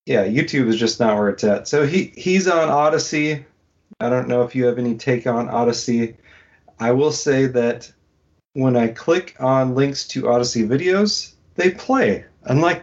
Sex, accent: male, American